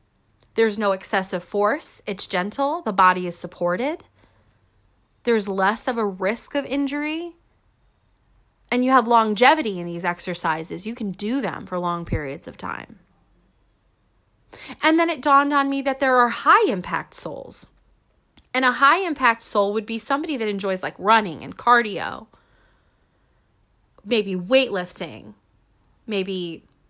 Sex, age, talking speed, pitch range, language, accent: female, 30-49, 135 wpm, 175-240 Hz, English, American